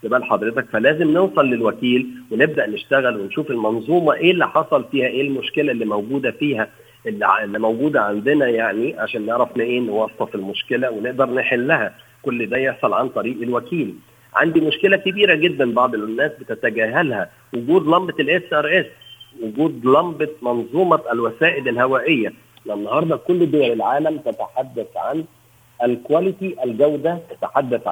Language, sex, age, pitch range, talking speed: Arabic, male, 50-69, 115-165 Hz, 130 wpm